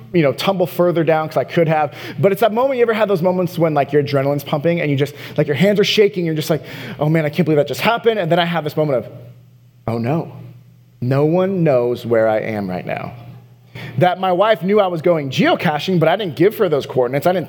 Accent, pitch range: American, 140-190 Hz